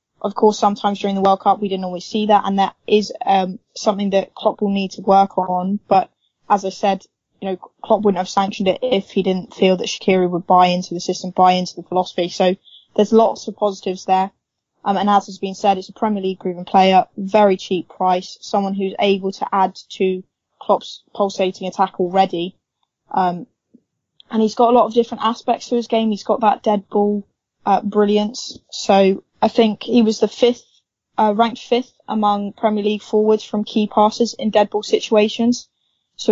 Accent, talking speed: British, 200 wpm